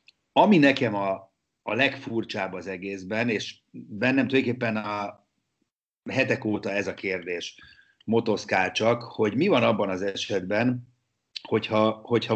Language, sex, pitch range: Hungarian, male, 95-120 Hz